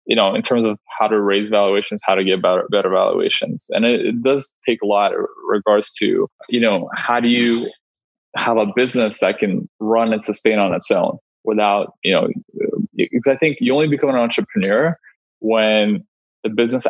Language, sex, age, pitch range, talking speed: English, male, 20-39, 105-120 Hz, 190 wpm